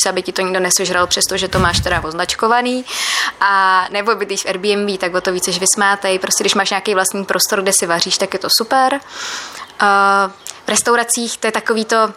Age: 20-39